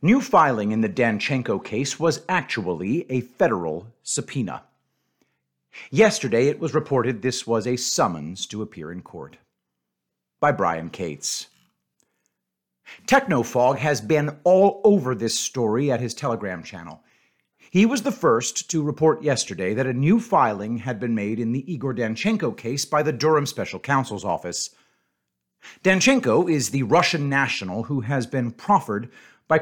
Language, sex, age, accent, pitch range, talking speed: English, male, 50-69, American, 120-165 Hz, 145 wpm